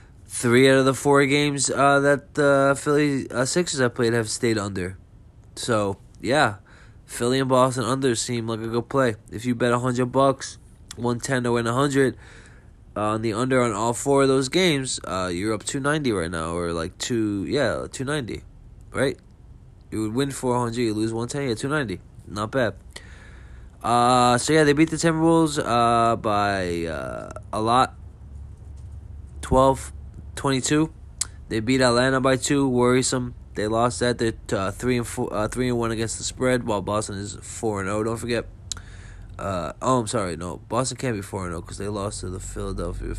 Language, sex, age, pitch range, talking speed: English, male, 20-39, 100-130 Hz, 190 wpm